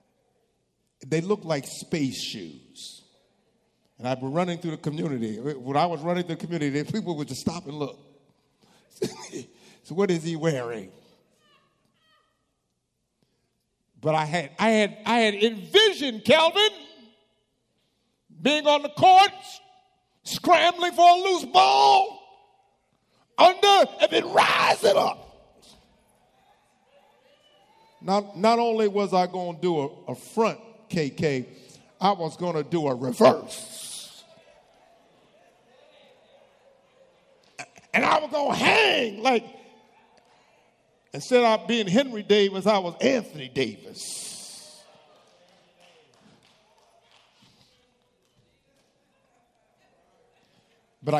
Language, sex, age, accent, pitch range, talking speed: English, male, 50-69, American, 160-260 Hz, 105 wpm